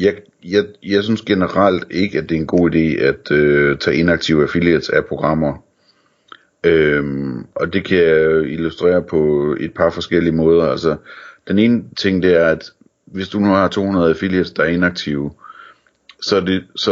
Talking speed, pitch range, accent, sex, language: 150 wpm, 80-90 Hz, native, male, Danish